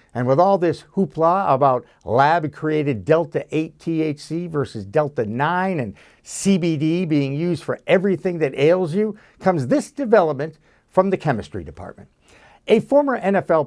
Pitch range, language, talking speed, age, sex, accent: 140-195 Hz, English, 125 wpm, 60-79, male, American